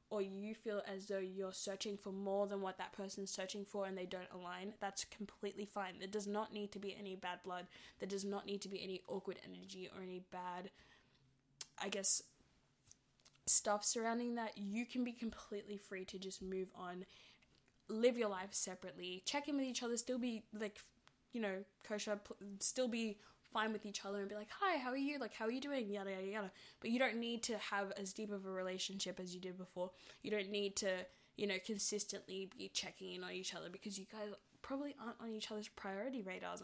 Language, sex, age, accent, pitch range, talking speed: English, female, 10-29, Australian, 190-215 Hz, 215 wpm